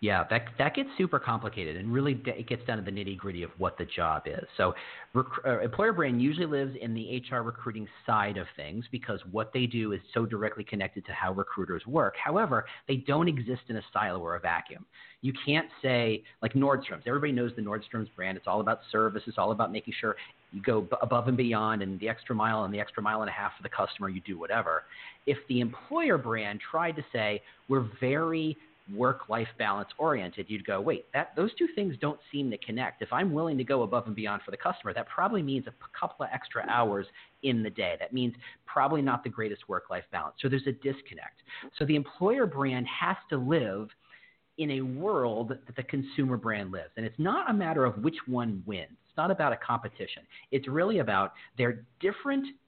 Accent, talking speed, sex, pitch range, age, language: American, 215 wpm, male, 110-140 Hz, 40-59, English